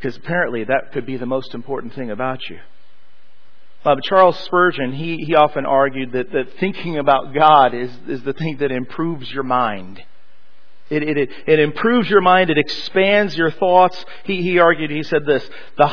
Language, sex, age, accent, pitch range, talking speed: English, male, 40-59, American, 140-190 Hz, 185 wpm